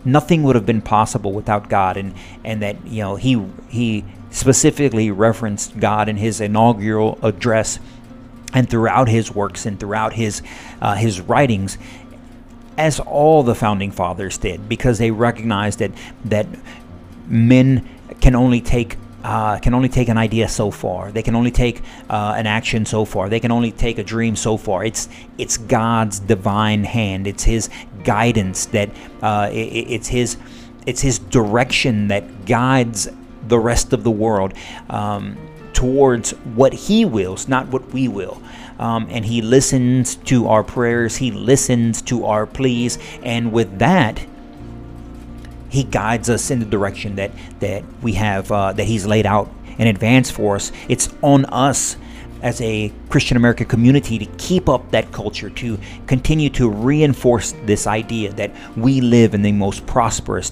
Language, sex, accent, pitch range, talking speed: English, male, American, 105-125 Hz, 160 wpm